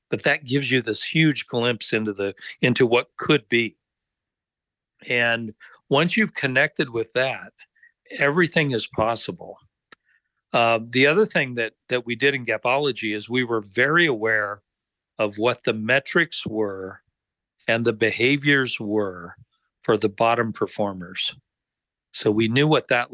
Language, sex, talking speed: English, male, 145 wpm